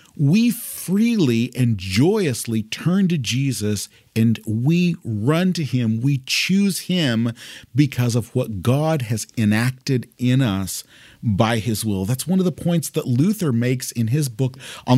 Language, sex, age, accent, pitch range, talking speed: English, male, 40-59, American, 110-145 Hz, 150 wpm